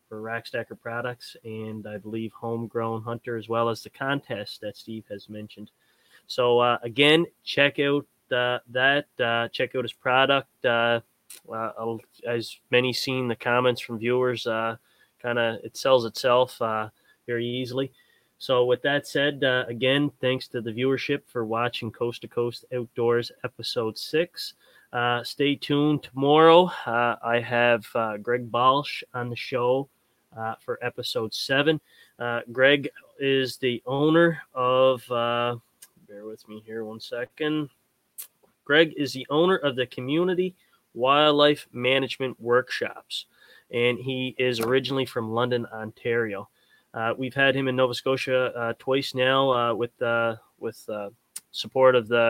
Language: English